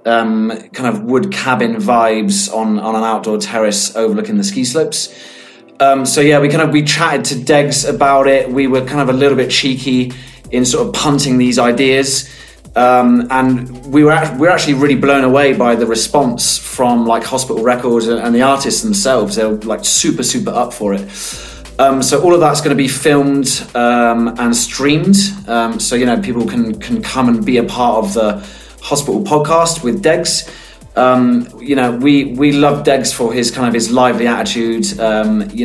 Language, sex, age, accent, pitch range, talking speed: English, male, 30-49, British, 120-150 Hz, 195 wpm